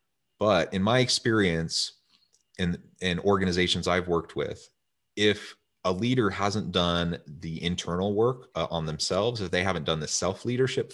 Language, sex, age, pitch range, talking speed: English, male, 30-49, 75-95 Hz, 150 wpm